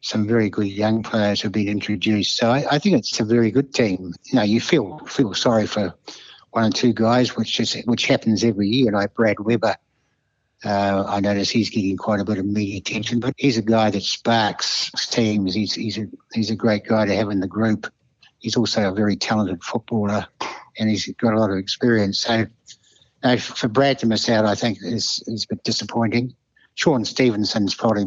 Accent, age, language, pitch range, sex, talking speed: British, 60-79, English, 105-120 Hz, male, 210 wpm